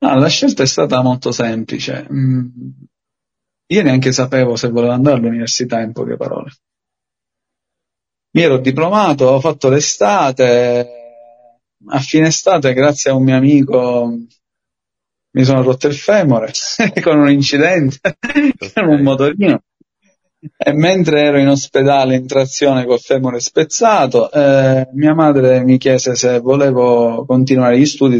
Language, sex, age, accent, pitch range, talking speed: Italian, male, 30-49, native, 125-155 Hz, 130 wpm